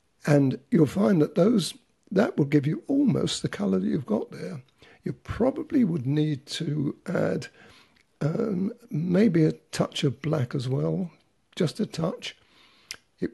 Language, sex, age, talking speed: English, male, 60-79, 155 wpm